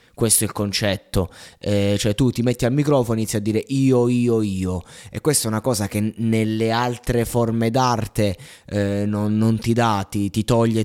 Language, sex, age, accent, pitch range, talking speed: Italian, male, 20-39, native, 105-145 Hz, 200 wpm